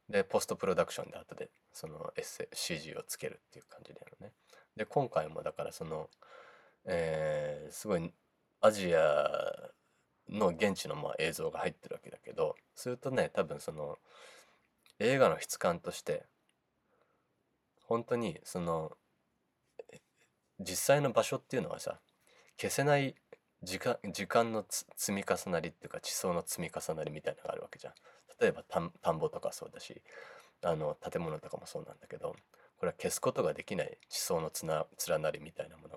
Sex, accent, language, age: male, native, Japanese, 20-39